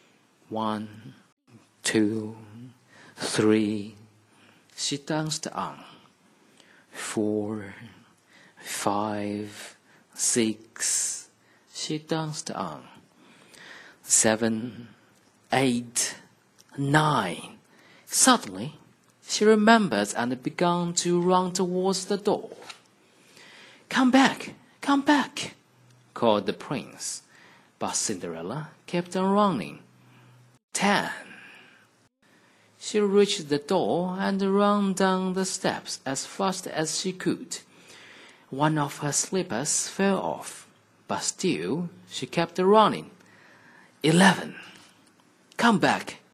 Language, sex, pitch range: Chinese, male, 120-195 Hz